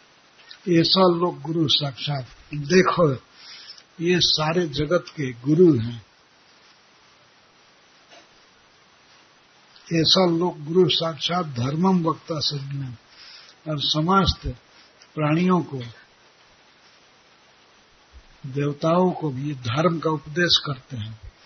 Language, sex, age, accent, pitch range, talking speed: Hindi, male, 60-79, native, 140-170 Hz, 85 wpm